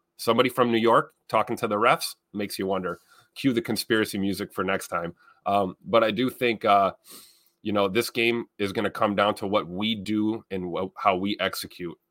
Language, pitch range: English, 95-115 Hz